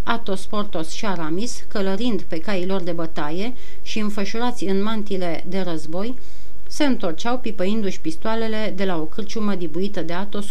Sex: female